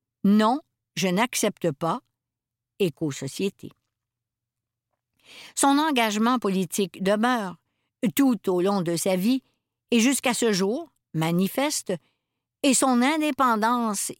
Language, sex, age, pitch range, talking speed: French, female, 60-79, 150-250 Hz, 105 wpm